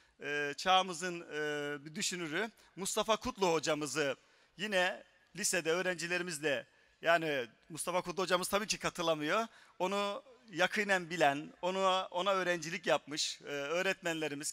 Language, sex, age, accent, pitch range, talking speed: Turkish, male, 40-59, native, 155-200 Hz, 110 wpm